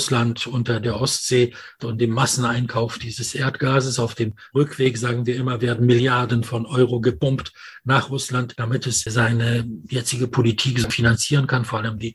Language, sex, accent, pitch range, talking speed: English, male, German, 120-145 Hz, 160 wpm